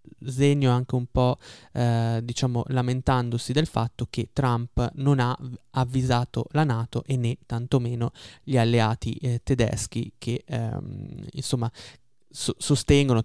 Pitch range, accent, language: 115-130 Hz, native, Italian